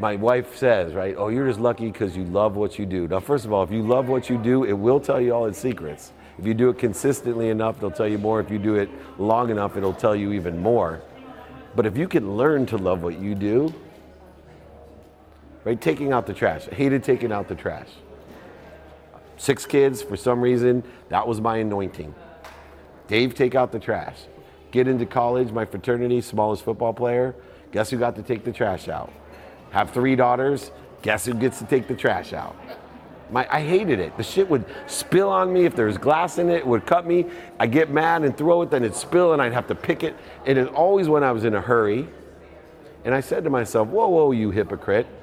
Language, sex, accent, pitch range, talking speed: English, male, American, 100-130 Hz, 220 wpm